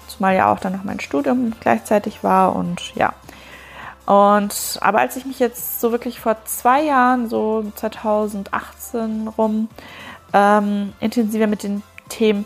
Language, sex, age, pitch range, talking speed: German, female, 20-39, 200-235 Hz, 145 wpm